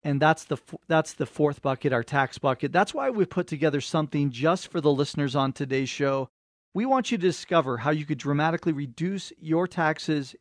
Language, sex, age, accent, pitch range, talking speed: English, male, 40-59, American, 140-170 Hz, 200 wpm